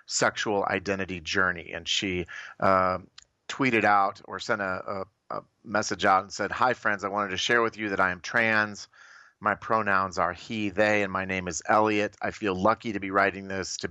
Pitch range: 95-105 Hz